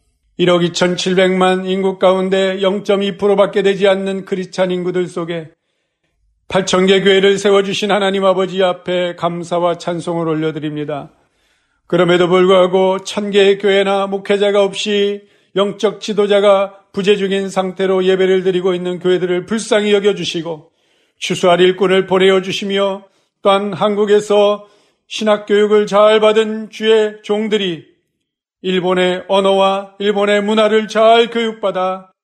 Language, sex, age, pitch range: Korean, male, 40-59, 185-210 Hz